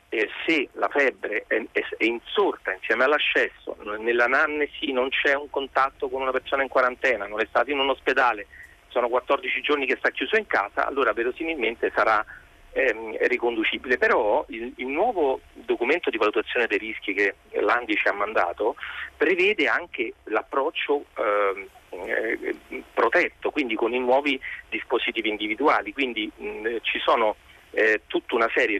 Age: 40-59